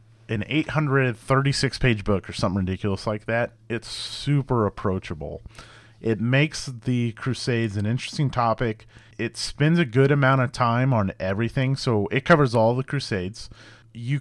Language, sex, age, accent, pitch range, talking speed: English, male, 30-49, American, 105-120 Hz, 145 wpm